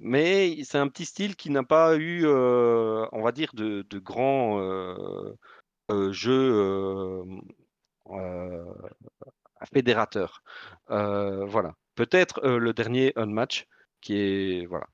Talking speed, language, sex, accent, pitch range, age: 135 wpm, French, male, French, 105-145 Hz, 40-59